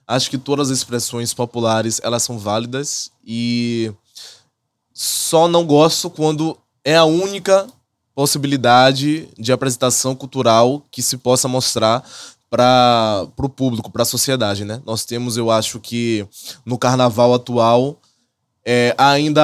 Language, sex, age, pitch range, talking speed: English, male, 20-39, 120-145 Hz, 120 wpm